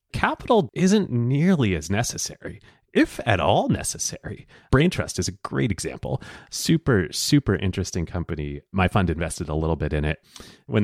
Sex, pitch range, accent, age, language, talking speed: male, 80-115 Hz, American, 30-49, English, 155 wpm